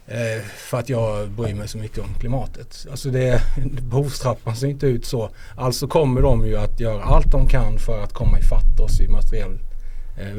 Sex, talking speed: male, 195 wpm